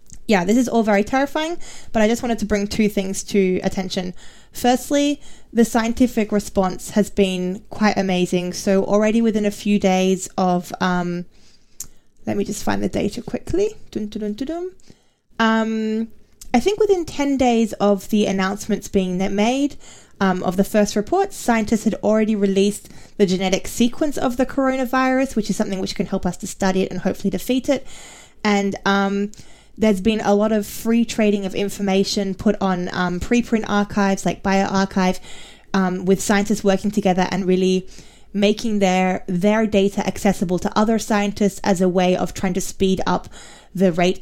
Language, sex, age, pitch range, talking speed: English, female, 10-29, 185-220 Hz, 170 wpm